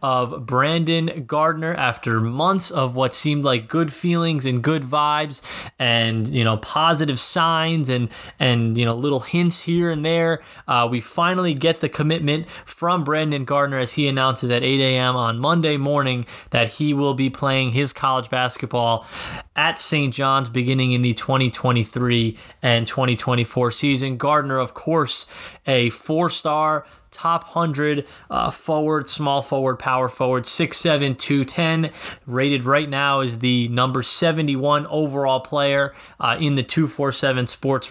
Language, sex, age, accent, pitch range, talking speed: English, male, 20-39, American, 125-150 Hz, 150 wpm